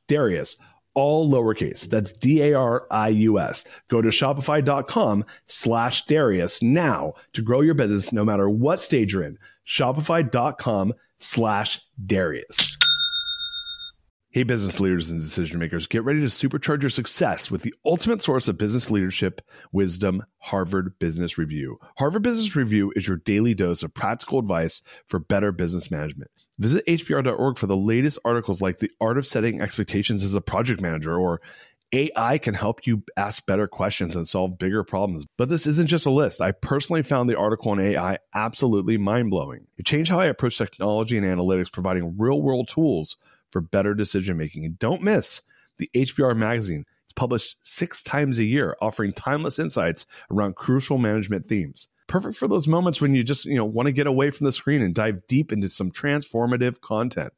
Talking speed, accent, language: 175 wpm, American, English